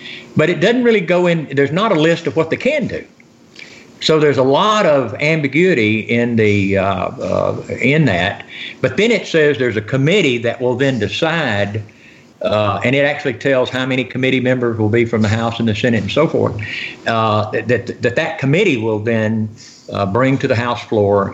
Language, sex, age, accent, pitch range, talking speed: English, male, 50-69, American, 105-135 Hz, 200 wpm